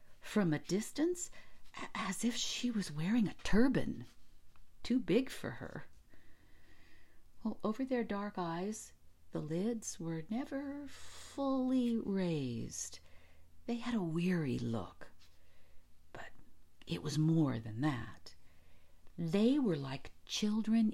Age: 50-69